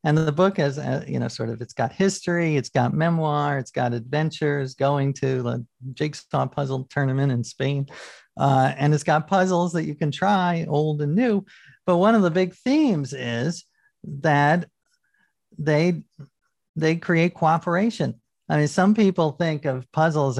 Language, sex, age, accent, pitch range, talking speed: English, male, 50-69, American, 135-175 Hz, 170 wpm